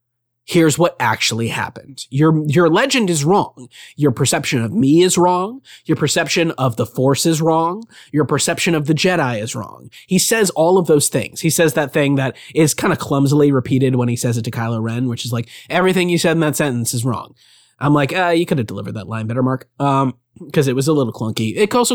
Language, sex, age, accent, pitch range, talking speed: English, male, 20-39, American, 125-170 Hz, 225 wpm